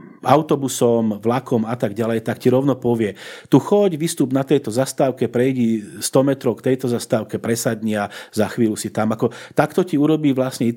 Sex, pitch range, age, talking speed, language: male, 115-140 Hz, 40-59, 175 wpm, Slovak